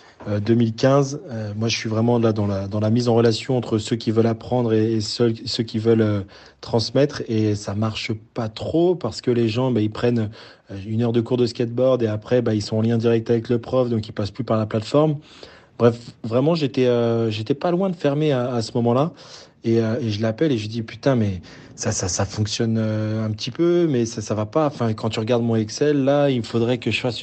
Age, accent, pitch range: 30-49, French, 110-130 Hz